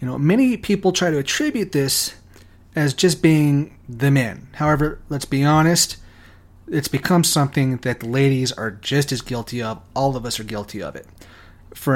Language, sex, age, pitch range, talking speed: English, male, 30-49, 120-165 Hz, 175 wpm